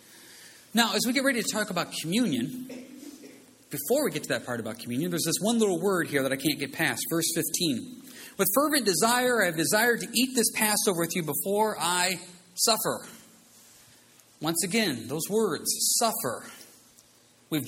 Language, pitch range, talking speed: English, 155-225 Hz, 175 wpm